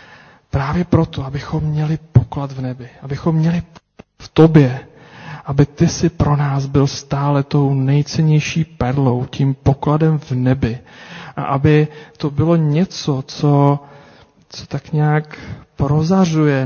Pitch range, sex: 130-145 Hz, male